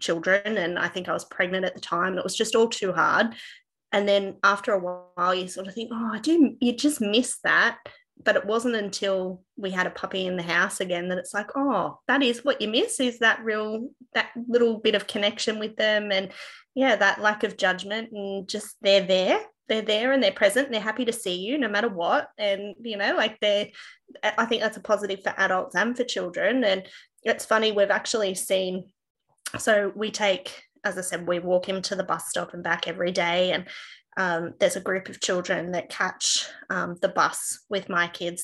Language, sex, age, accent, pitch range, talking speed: English, female, 20-39, Australian, 185-220 Hz, 215 wpm